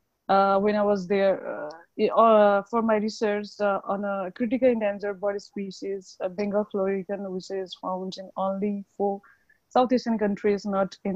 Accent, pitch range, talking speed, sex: Indian, 200-230 Hz, 160 wpm, female